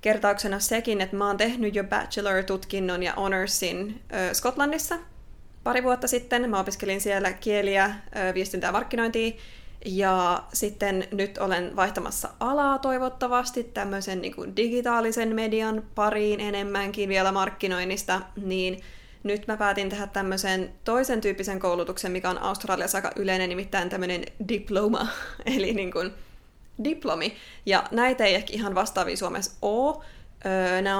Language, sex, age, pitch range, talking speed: Finnish, female, 20-39, 190-225 Hz, 130 wpm